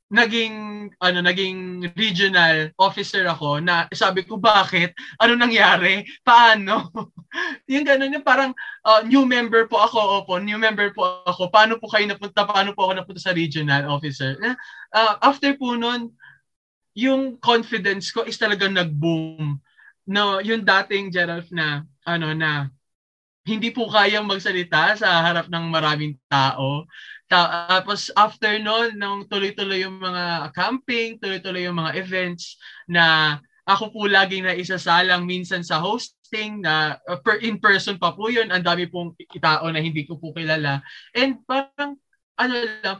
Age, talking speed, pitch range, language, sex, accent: 20-39, 145 wpm, 165-215 Hz, Filipino, male, native